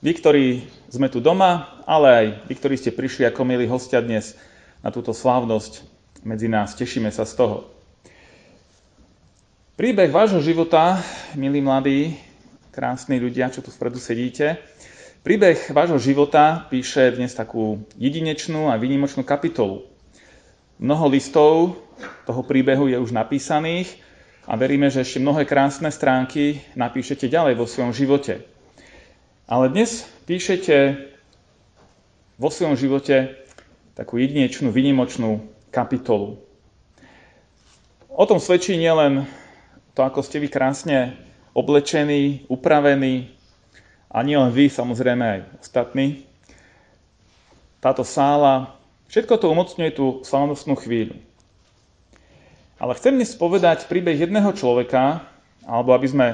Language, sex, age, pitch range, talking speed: Slovak, male, 30-49, 120-150 Hz, 115 wpm